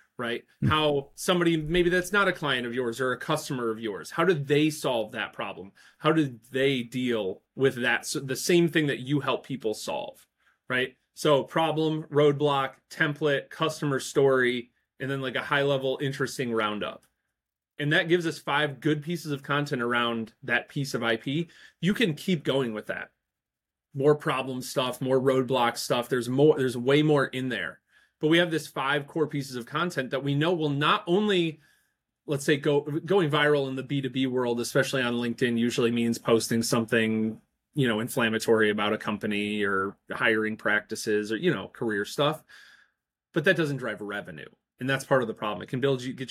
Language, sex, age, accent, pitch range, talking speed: English, male, 30-49, American, 120-150 Hz, 190 wpm